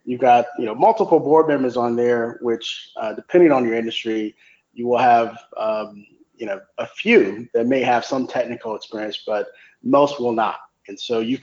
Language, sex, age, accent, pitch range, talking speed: English, male, 30-49, American, 110-140 Hz, 190 wpm